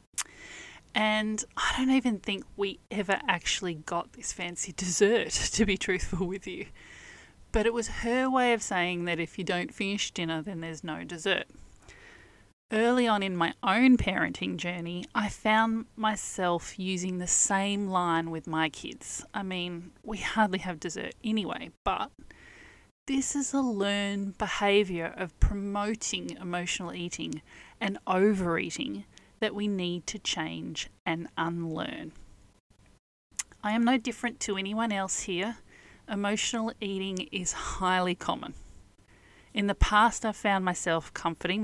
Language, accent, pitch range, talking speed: English, Australian, 175-215 Hz, 140 wpm